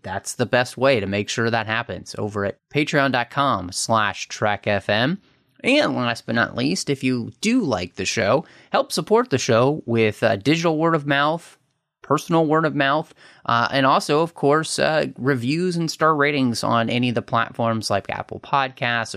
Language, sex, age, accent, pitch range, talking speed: English, male, 30-49, American, 105-145 Hz, 185 wpm